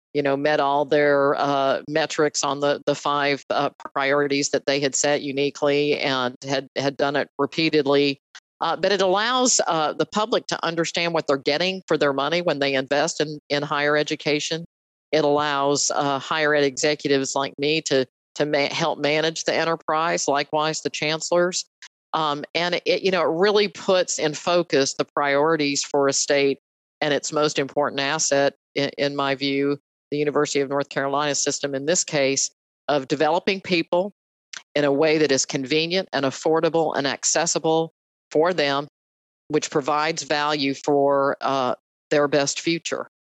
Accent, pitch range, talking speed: American, 140-155 Hz, 165 wpm